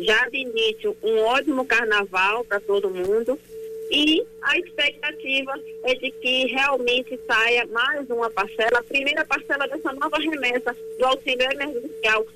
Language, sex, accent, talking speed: Portuguese, female, Brazilian, 140 wpm